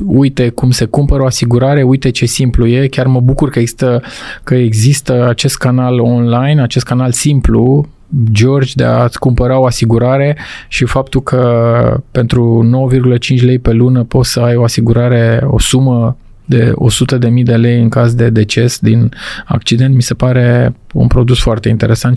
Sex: male